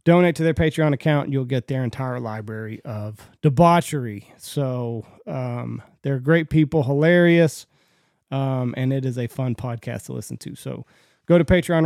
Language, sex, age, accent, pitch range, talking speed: English, male, 30-49, American, 130-165 Hz, 165 wpm